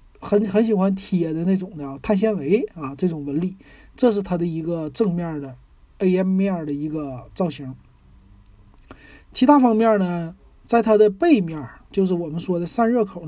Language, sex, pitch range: Chinese, male, 160-210 Hz